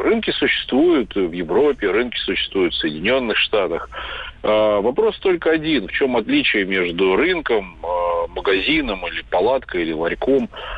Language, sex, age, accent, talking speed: Russian, male, 40-59, native, 120 wpm